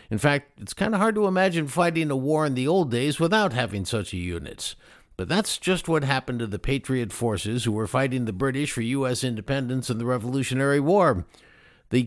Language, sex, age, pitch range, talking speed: English, male, 50-69, 110-145 Hz, 205 wpm